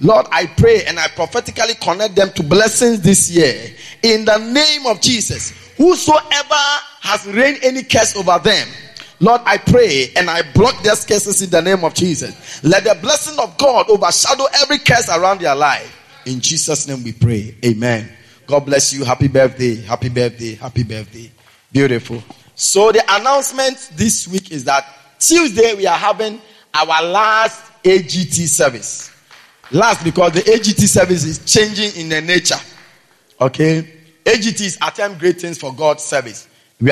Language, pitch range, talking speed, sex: English, 140-220 Hz, 160 wpm, male